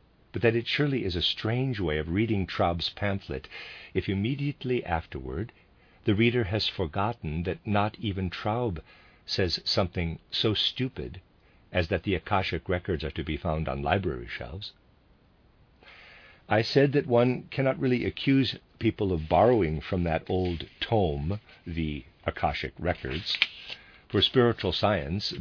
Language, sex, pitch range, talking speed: English, male, 85-115 Hz, 140 wpm